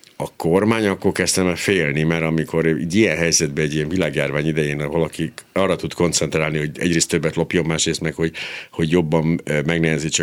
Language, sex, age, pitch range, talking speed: Hungarian, male, 60-79, 80-95 Hz, 170 wpm